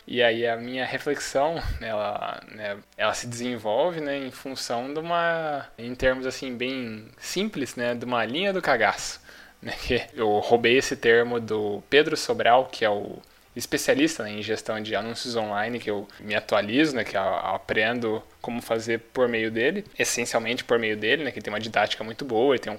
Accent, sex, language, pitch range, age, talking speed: Brazilian, male, Portuguese, 110-145 Hz, 10-29, 185 wpm